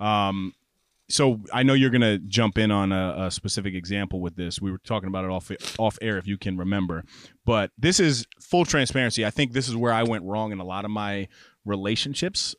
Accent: American